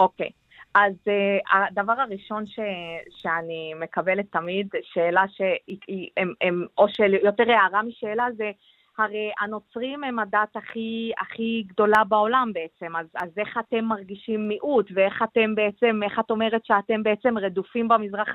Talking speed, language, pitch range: 135 wpm, Hebrew, 180-230 Hz